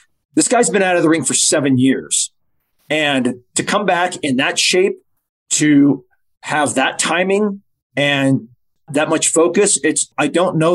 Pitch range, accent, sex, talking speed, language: 130-160 Hz, American, male, 155 wpm, English